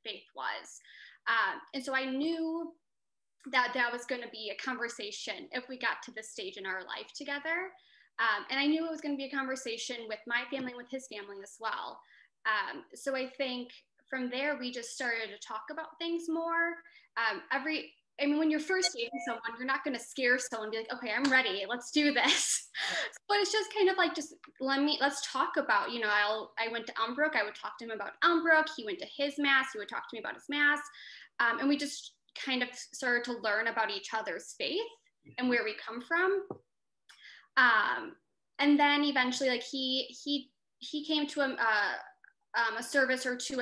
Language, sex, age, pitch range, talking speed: English, female, 10-29, 230-290 Hz, 215 wpm